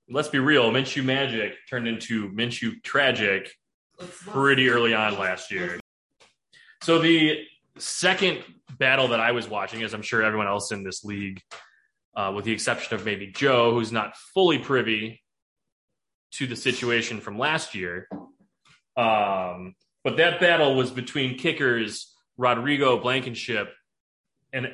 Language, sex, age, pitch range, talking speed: English, male, 20-39, 110-140 Hz, 140 wpm